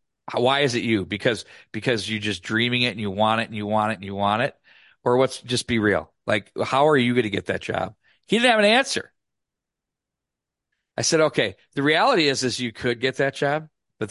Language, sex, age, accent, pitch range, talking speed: English, male, 40-59, American, 115-155 Hz, 230 wpm